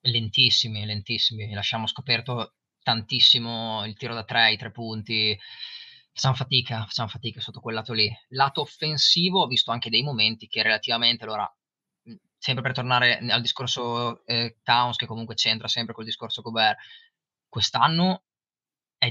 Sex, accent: male, native